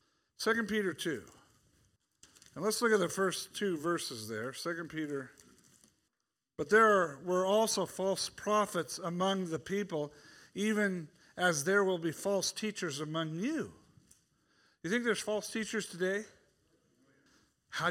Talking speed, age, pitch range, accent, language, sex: 135 wpm, 50-69, 145-195 Hz, American, English, male